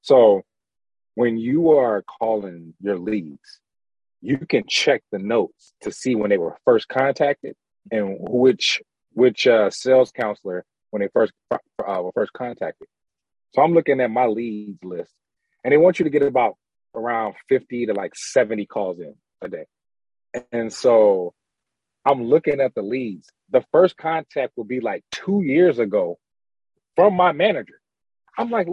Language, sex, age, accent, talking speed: English, male, 30-49, American, 160 wpm